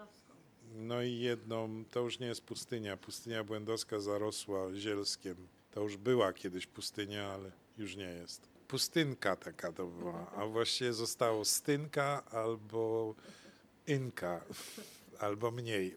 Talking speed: 125 wpm